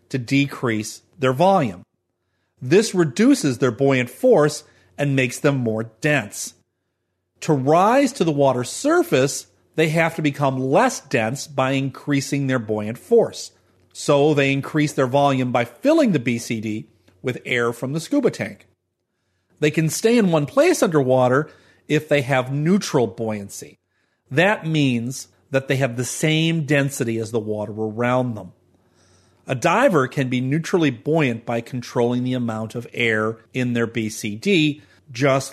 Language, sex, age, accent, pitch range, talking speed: English, male, 40-59, American, 110-145 Hz, 145 wpm